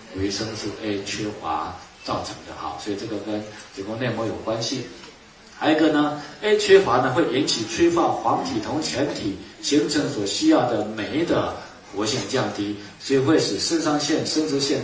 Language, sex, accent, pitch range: Chinese, male, native, 110-165 Hz